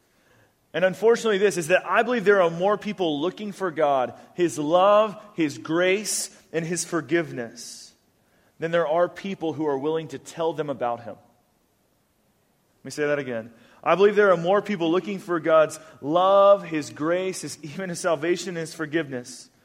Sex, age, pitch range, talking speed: male, 30-49, 150-185 Hz, 175 wpm